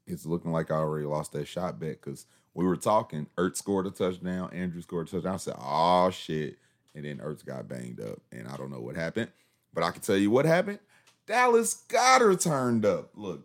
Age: 30-49